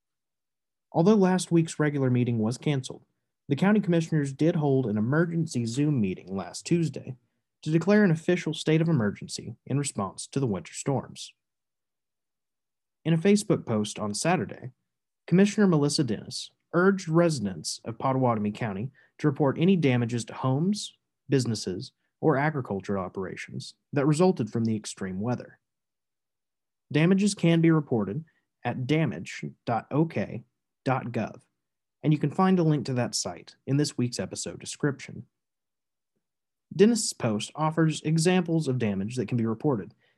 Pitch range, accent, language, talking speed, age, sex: 115-165 Hz, American, English, 135 wpm, 30-49, male